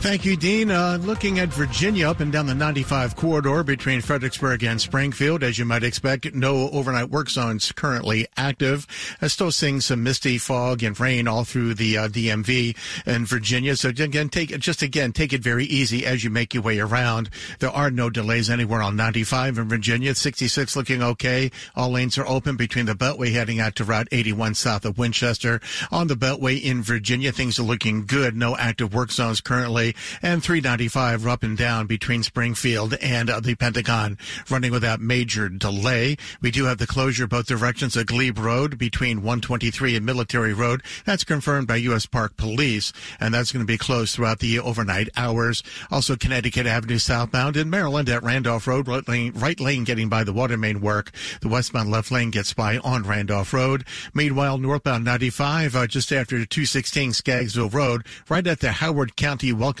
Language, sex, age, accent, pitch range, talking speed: English, male, 50-69, American, 115-135 Hz, 190 wpm